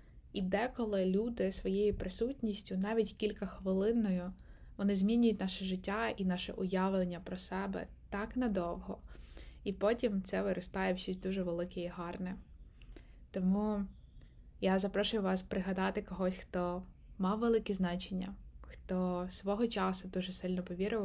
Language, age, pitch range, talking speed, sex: Ukrainian, 20-39, 180-200 Hz, 130 wpm, female